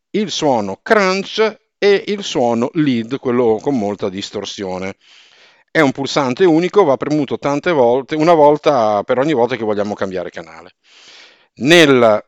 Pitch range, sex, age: 115-195 Hz, male, 50-69